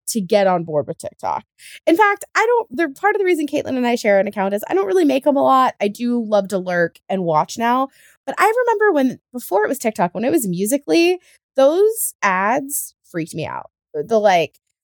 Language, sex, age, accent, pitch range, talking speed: English, female, 20-39, American, 185-295 Hz, 225 wpm